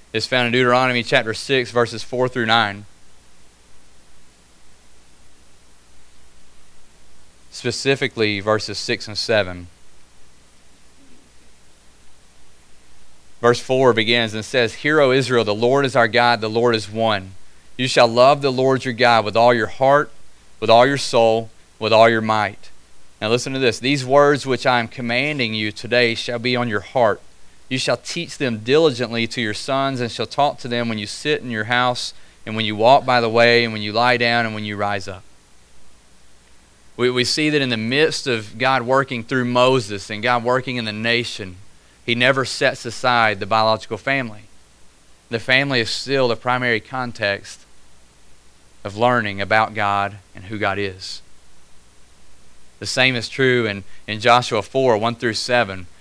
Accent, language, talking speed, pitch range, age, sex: American, English, 165 wpm, 90-125 Hz, 30-49, male